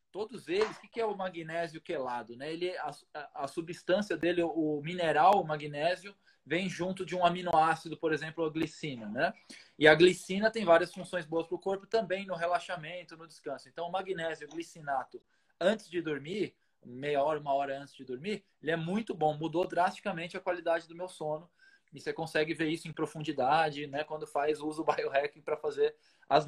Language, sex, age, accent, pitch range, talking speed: Portuguese, male, 20-39, Brazilian, 150-185 Hz, 195 wpm